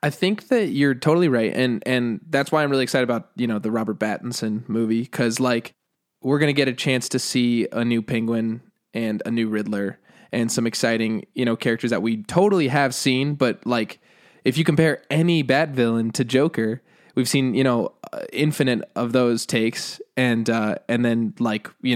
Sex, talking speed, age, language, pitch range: male, 195 wpm, 20-39, English, 115-140 Hz